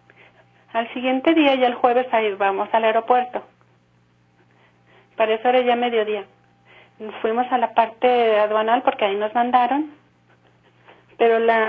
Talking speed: 130 wpm